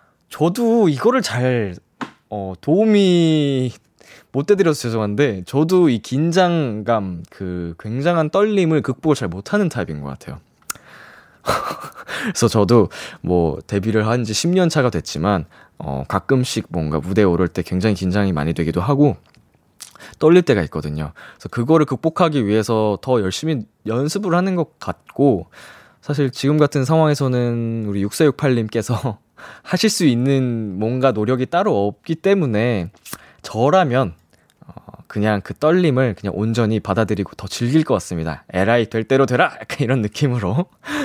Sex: male